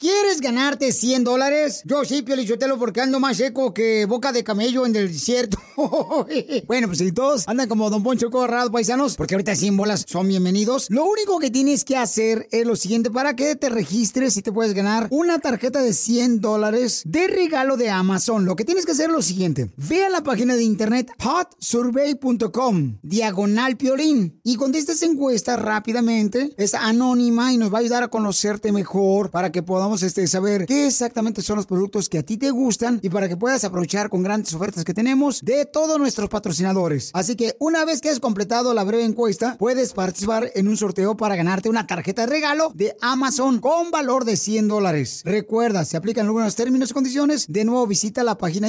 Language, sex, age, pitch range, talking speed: Spanish, male, 30-49, 205-265 Hz, 200 wpm